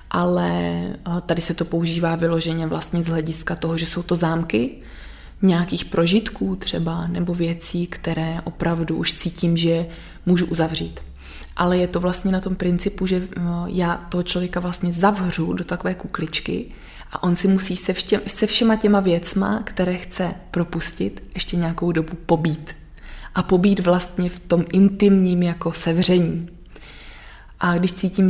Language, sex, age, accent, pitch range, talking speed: Czech, female, 20-39, native, 165-180 Hz, 145 wpm